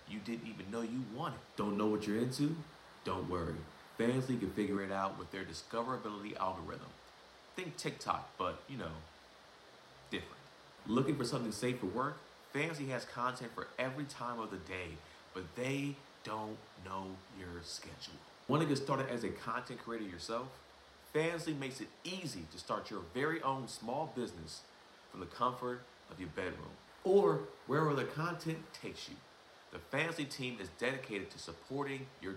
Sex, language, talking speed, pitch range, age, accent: male, English, 165 wpm, 95-140 Hz, 40-59, American